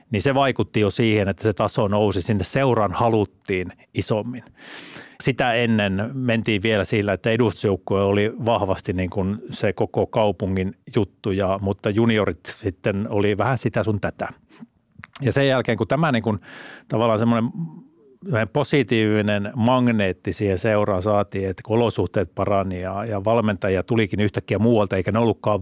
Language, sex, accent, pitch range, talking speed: Finnish, male, native, 100-115 Hz, 150 wpm